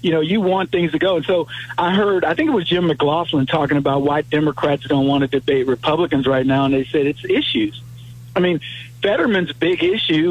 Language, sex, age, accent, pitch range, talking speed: English, male, 50-69, American, 135-175 Hz, 220 wpm